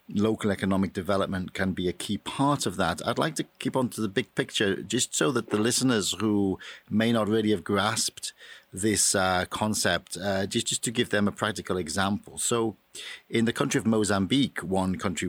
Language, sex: English, male